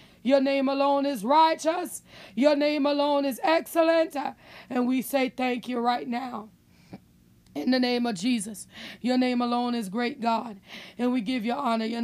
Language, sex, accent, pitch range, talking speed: English, female, American, 235-295 Hz, 170 wpm